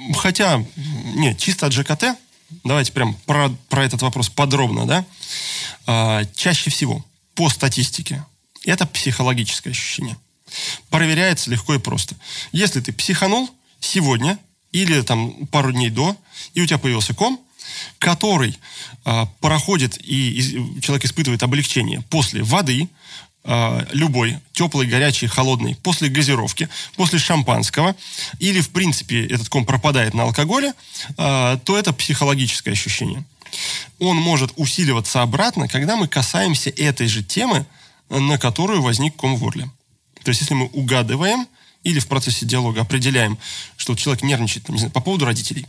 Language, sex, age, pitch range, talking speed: Russian, male, 20-39, 125-160 Hz, 135 wpm